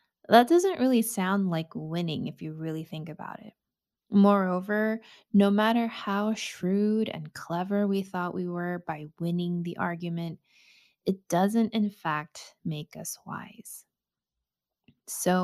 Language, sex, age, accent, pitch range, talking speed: English, female, 20-39, American, 170-215 Hz, 135 wpm